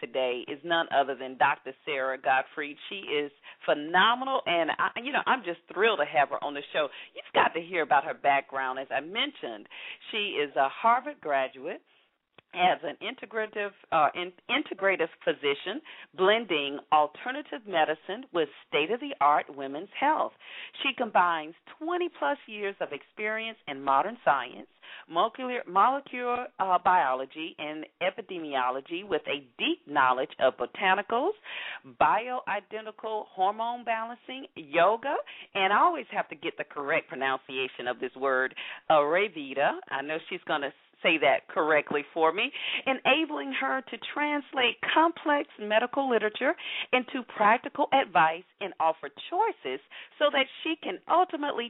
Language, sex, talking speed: English, female, 135 wpm